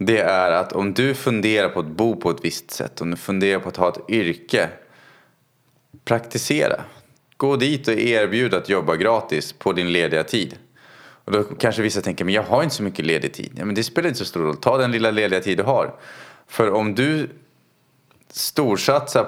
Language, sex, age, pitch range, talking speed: Swedish, male, 30-49, 90-120 Hz, 200 wpm